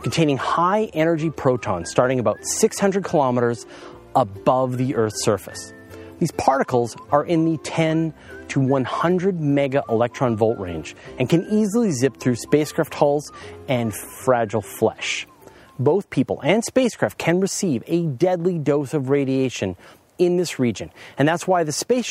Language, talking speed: English, 145 wpm